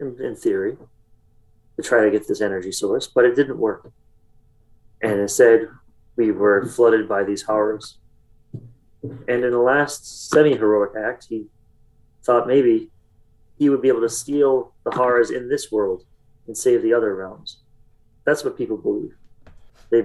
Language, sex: English, male